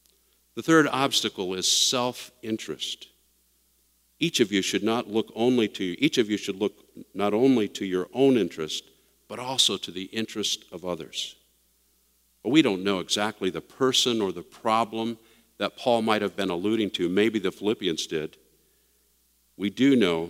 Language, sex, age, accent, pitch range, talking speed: English, male, 50-69, American, 85-115 Hz, 165 wpm